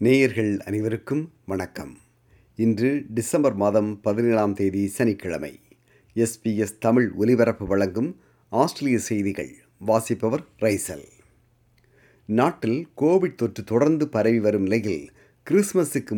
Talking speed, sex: 95 wpm, male